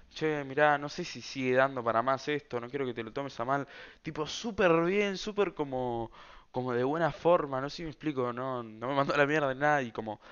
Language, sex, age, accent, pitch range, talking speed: Spanish, male, 20-39, Argentinian, 125-170 Hz, 245 wpm